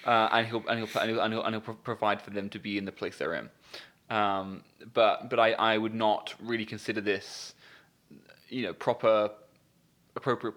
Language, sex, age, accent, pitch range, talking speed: English, male, 20-39, British, 105-115 Hz, 185 wpm